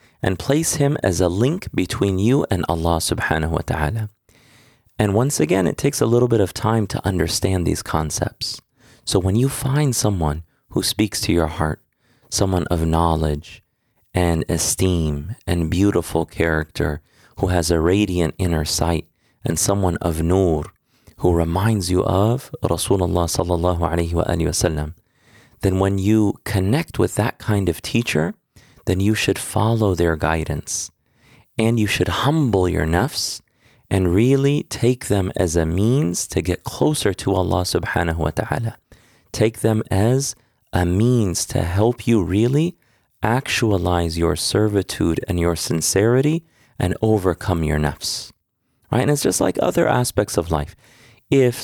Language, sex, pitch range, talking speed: English, male, 85-115 Hz, 150 wpm